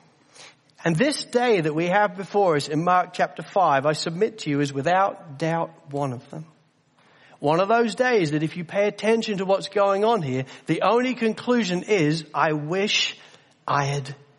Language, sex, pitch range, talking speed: English, male, 165-225 Hz, 185 wpm